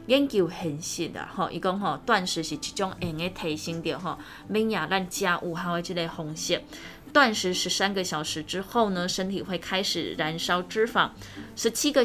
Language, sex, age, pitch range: Chinese, female, 20-39, 165-200 Hz